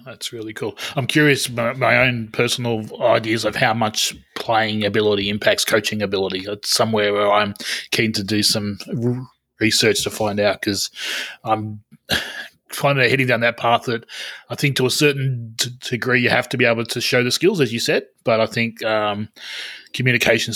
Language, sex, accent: English, male, Australian